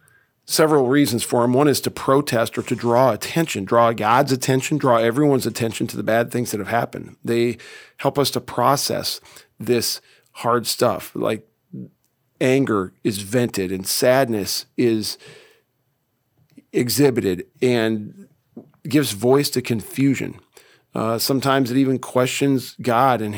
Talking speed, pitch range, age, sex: 135 wpm, 115-130 Hz, 40-59, male